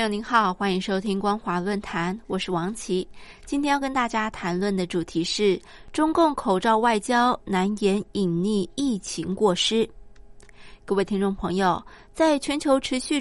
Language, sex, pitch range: Chinese, female, 190-255 Hz